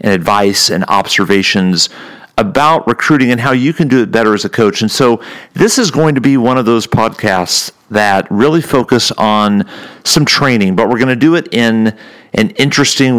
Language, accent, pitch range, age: English, American, 105-140 Hz, 40-59